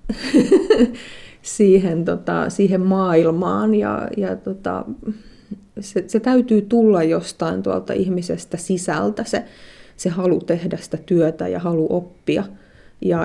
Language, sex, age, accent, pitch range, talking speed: Finnish, female, 30-49, native, 175-210 Hz, 105 wpm